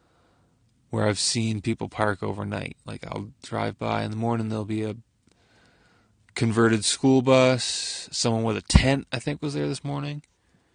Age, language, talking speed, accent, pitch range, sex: 20-39, English, 160 wpm, American, 100-120 Hz, male